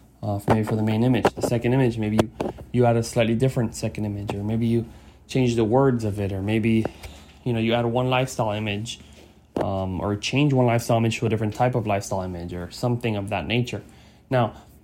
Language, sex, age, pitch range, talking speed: English, male, 20-39, 100-125 Hz, 220 wpm